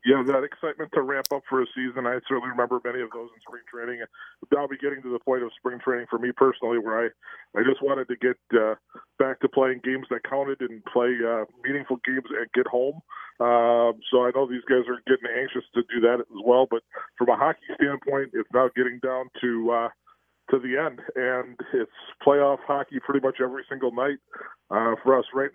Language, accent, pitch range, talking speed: English, American, 120-140 Hz, 220 wpm